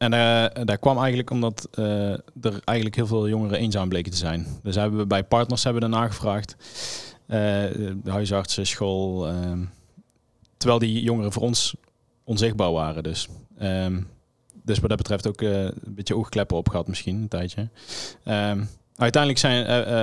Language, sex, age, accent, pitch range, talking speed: Dutch, male, 20-39, Dutch, 100-115 Hz, 175 wpm